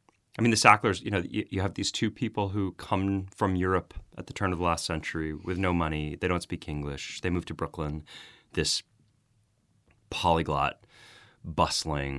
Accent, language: American, English